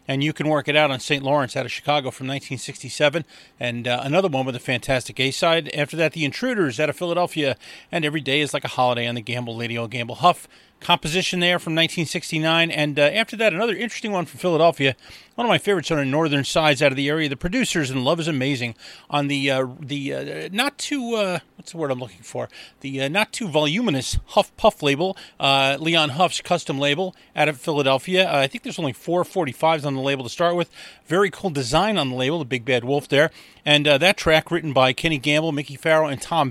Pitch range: 135-180 Hz